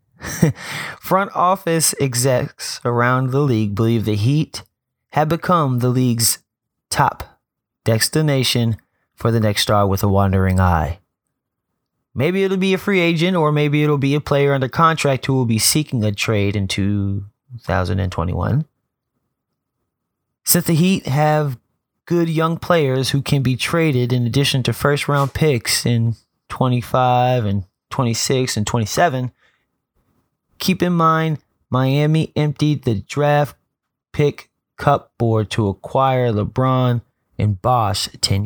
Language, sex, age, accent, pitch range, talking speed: English, male, 30-49, American, 110-145 Hz, 130 wpm